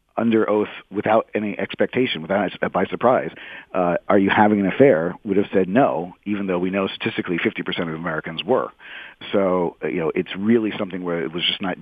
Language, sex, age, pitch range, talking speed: English, male, 50-69, 85-105 Hz, 200 wpm